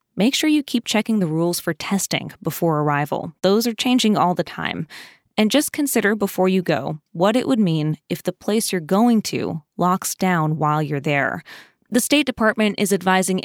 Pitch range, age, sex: 175-220 Hz, 20-39, female